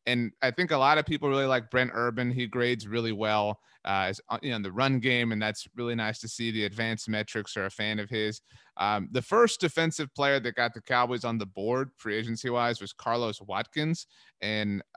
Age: 30-49